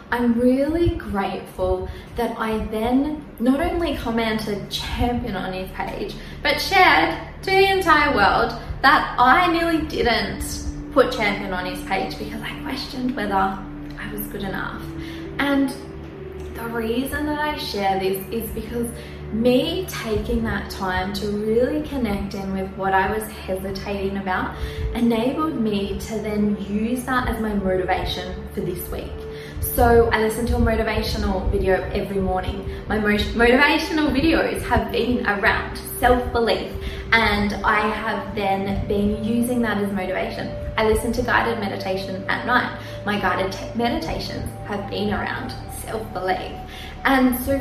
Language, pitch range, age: English, 195-250 Hz, 10-29